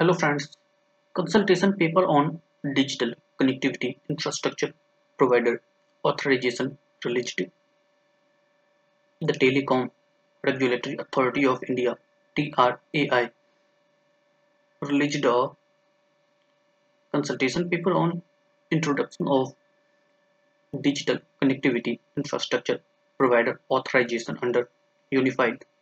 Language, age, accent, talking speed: English, 20-39, Indian, 75 wpm